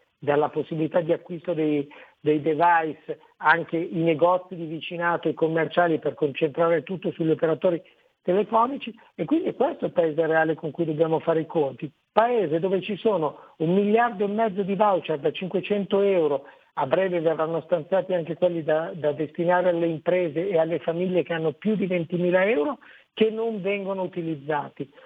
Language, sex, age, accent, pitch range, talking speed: Italian, male, 50-69, native, 160-205 Hz, 170 wpm